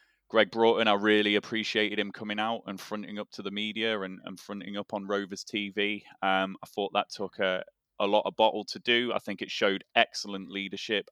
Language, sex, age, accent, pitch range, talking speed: English, male, 20-39, British, 90-110 Hz, 210 wpm